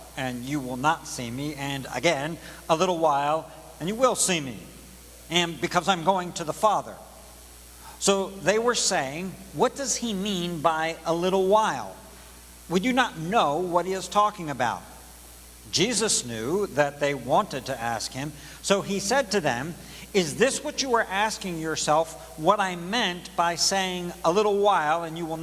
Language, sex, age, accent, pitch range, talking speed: English, male, 60-79, American, 145-190 Hz, 175 wpm